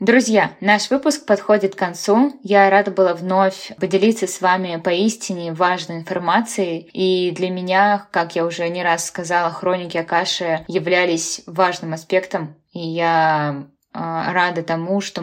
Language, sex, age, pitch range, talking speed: Russian, female, 20-39, 165-190 Hz, 140 wpm